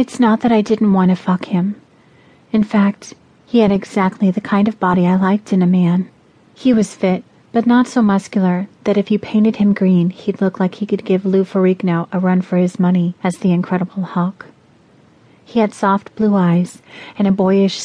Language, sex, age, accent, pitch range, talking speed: English, female, 30-49, American, 185-215 Hz, 205 wpm